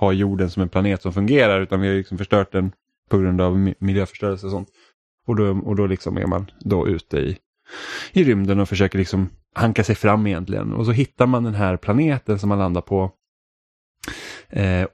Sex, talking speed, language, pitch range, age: male, 200 wpm, Swedish, 95-120 Hz, 20-39